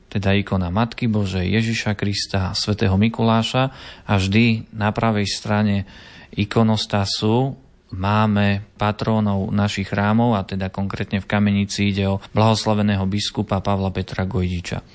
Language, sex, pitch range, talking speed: Slovak, male, 100-115 Hz, 125 wpm